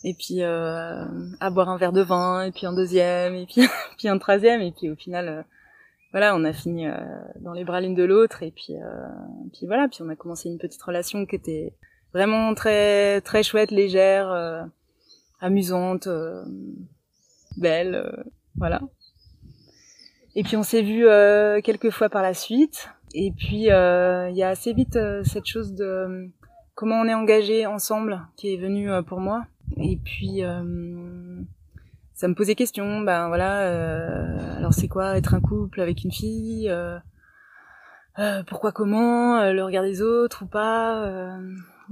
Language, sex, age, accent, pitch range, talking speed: French, female, 20-39, French, 175-215 Hz, 180 wpm